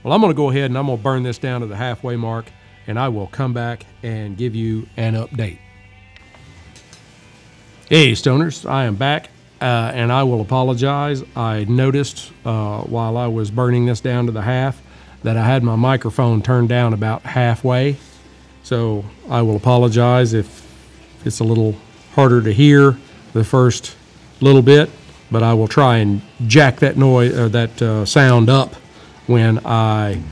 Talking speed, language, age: 175 wpm, English, 50-69